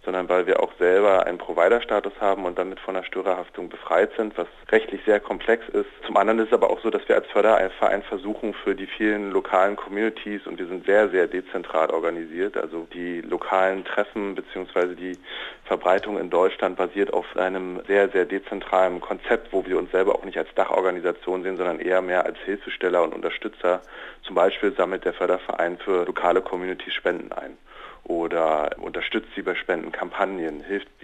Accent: German